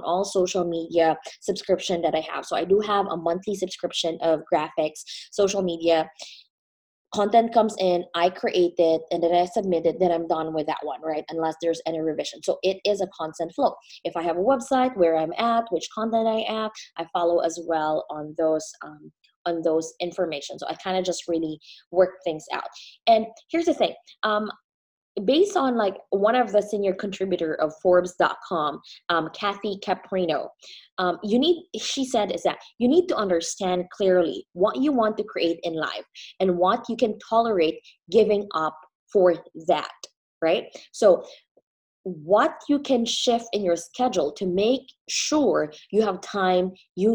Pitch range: 165-215 Hz